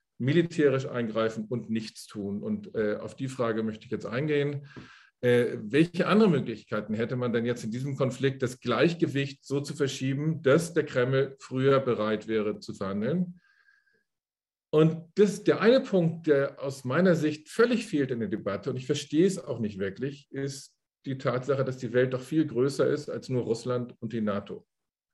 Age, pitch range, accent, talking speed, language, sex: 50-69, 125-155 Hz, German, 180 wpm, German, male